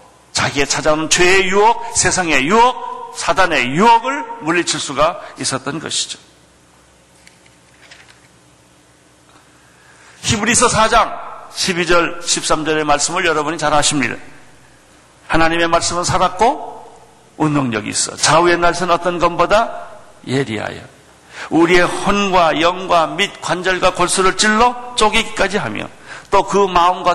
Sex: male